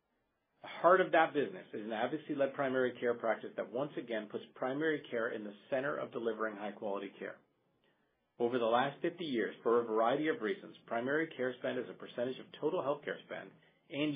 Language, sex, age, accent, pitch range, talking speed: English, male, 40-59, American, 105-140 Hz, 195 wpm